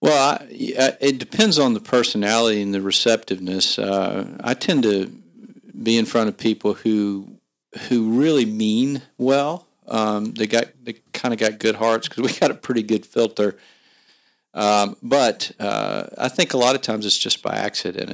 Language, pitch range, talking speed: English, 105-125 Hz, 170 wpm